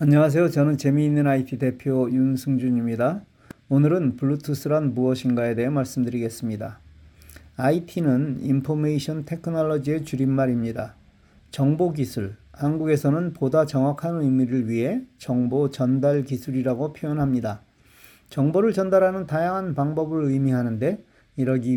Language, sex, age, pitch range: Korean, male, 40-59, 125-155 Hz